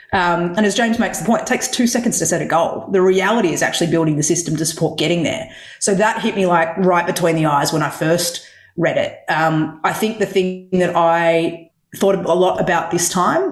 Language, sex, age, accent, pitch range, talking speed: English, female, 30-49, Australian, 160-190 Hz, 235 wpm